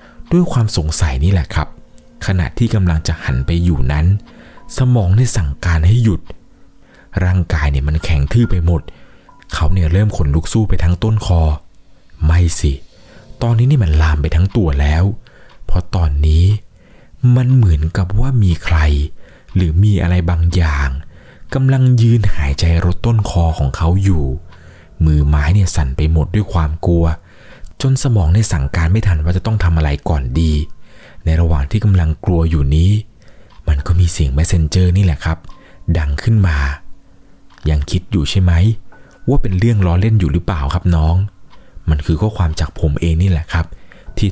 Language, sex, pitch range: Thai, male, 80-100 Hz